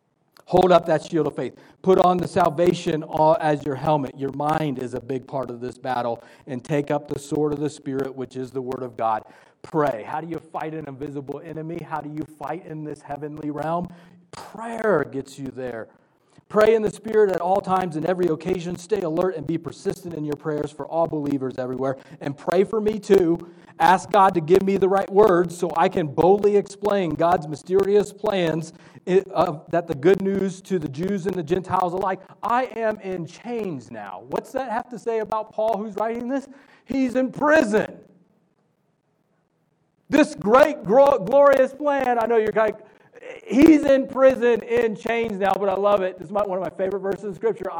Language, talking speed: English, 195 wpm